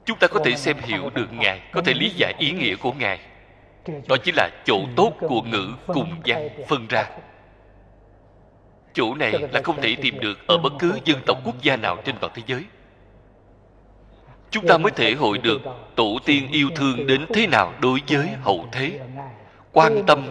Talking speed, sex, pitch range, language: 190 wpm, male, 100-135 Hz, Vietnamese